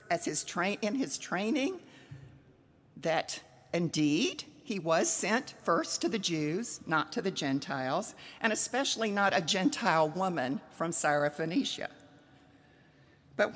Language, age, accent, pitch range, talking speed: English, 50-69, American, 155-255 Hz, 125 wpm